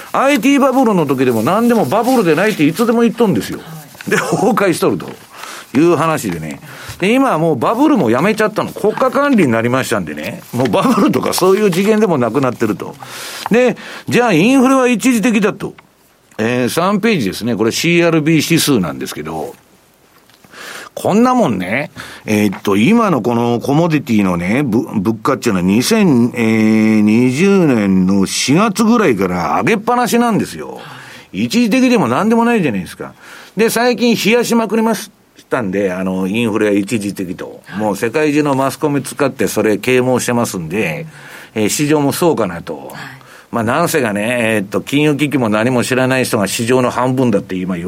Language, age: Japanese, 50-69